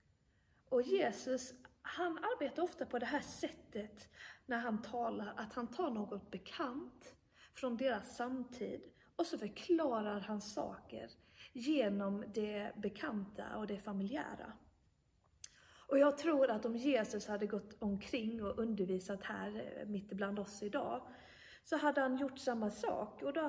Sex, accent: female, native